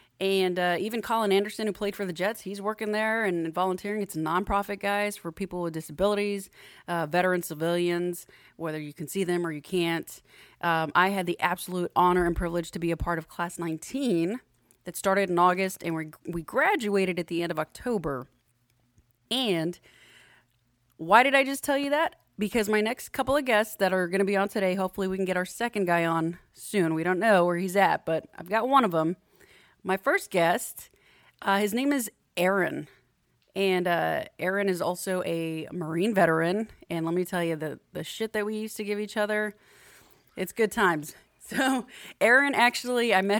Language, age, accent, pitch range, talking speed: English, 30-49, American, 170-210 Hz, 200 wpm